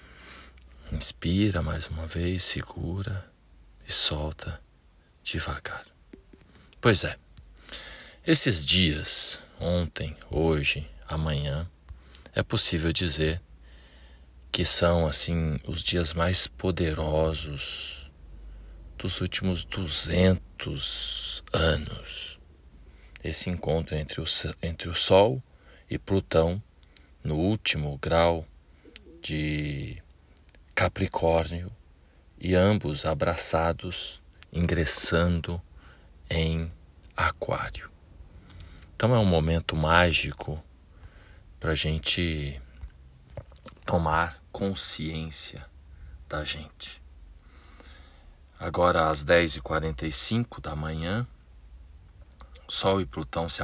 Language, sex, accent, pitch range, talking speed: Portuguese, male, Brazilian, 75-85 Hz, 80 wpm